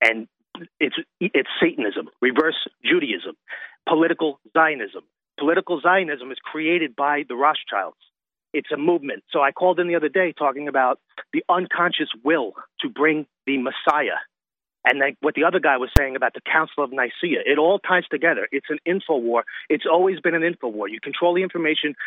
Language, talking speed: English, 175 wpm